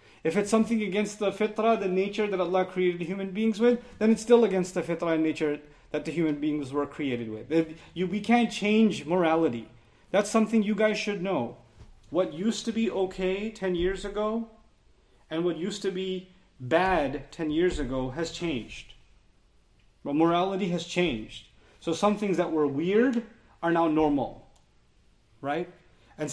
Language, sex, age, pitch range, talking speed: English, male, 30-49, 170-220 Hz, 165 wpm